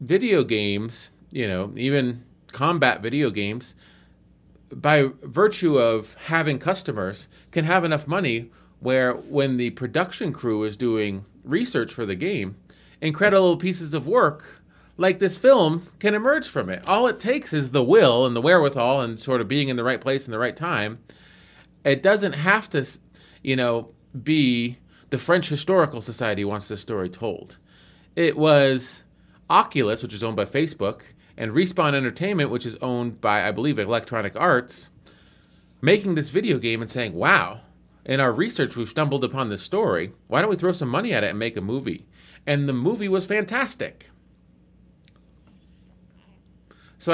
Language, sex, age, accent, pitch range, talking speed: English, male, 30-49, American, 110-170 Hz, 160 wpm